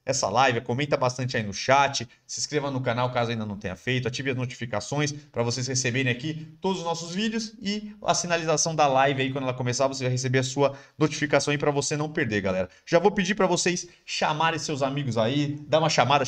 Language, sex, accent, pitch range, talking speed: Portuguese, male, Brazilian, 120-155 Hz, 220 wpm